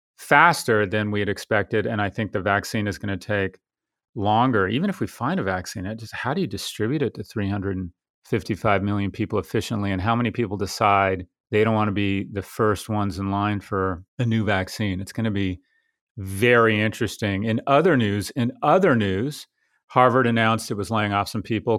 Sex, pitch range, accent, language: male, 100-115 Hz, American, English